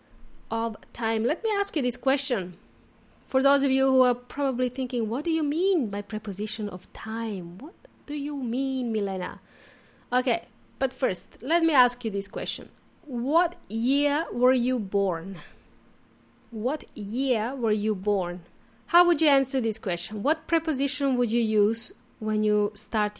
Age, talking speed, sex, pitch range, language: 30-49, 160 wpm, female, 220-285 Hz, English